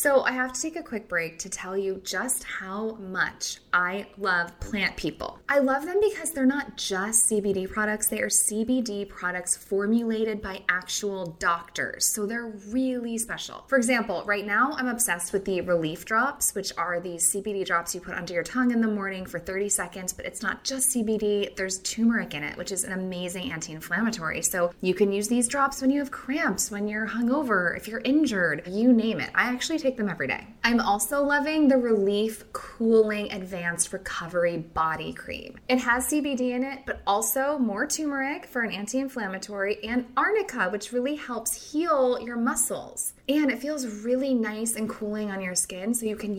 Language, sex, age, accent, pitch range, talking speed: English, female, 20-39, American, 190-255 Hz, 190 wpm